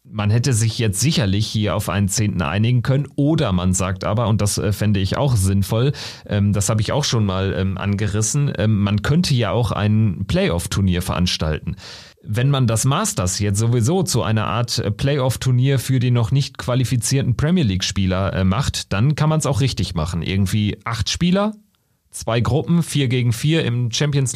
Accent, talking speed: German, 170 wpm